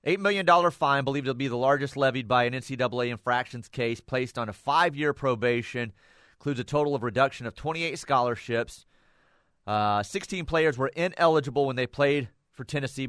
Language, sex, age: English, male, 30-49